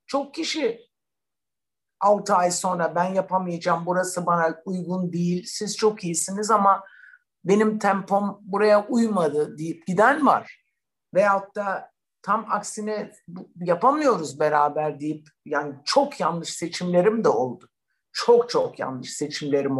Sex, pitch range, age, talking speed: male, 180-250 Hz, 60-79, 120 wpm